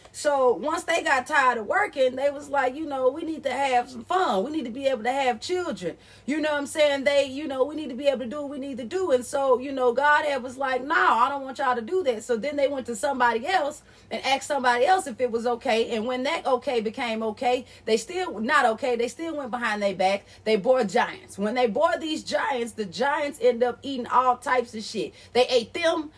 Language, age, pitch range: English, 30-49, 245-315 Hz